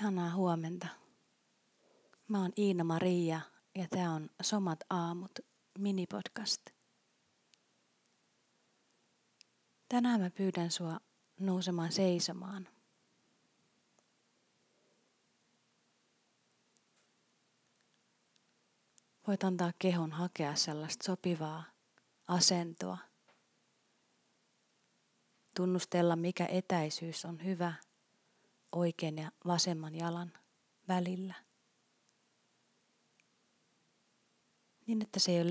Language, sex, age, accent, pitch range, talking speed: Finnish, female, 30-49, native, 170-190 Hz, 70 wpm